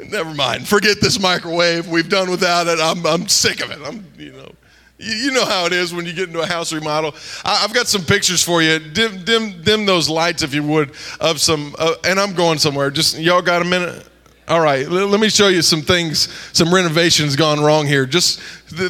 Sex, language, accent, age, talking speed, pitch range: male, English, American, 20-39, 230 wpm, 160-200 Hz